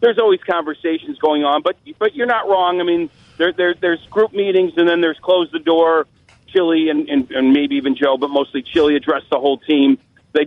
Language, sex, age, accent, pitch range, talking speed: English, male, 40-59, American, 150-200 Hz, 220 wpm